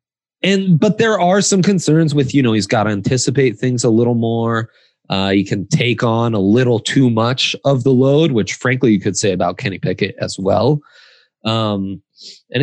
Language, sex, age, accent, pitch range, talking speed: English, male, 20-39, American, 115-150 Hz, 195 wpm